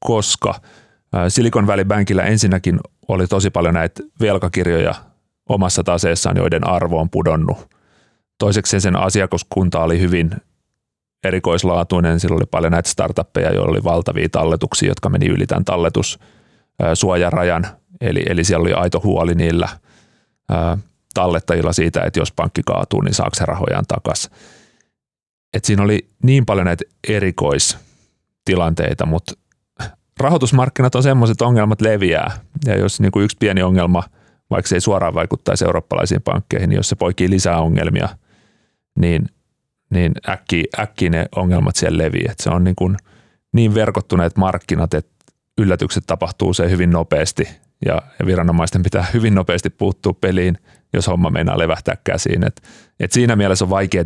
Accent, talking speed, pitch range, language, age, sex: native, 135 wpm, 85-105 Hz, Finnish, 30-49, male